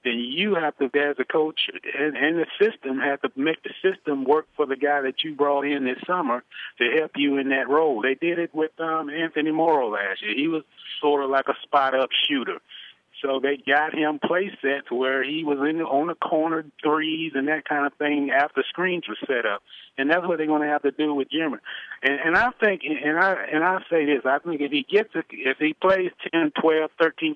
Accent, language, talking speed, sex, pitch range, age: American, English, 230 wpm, male, 135-155 Hz, 50-69